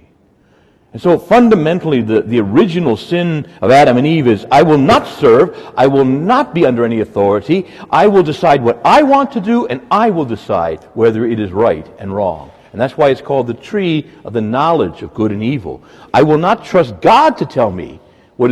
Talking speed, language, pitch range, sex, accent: 205 wpm, English, 115-185 Hz, male, American